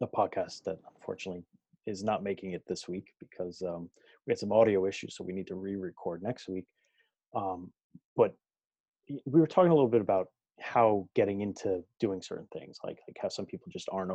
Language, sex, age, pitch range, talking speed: English, male, 30-49, 95-110 Hz, 195 wpm